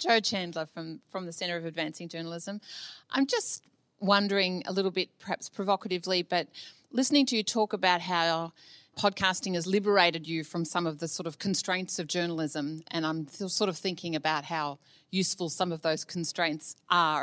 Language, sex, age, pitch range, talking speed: English, female, 30-49, 165-200 Hz, 175 wpm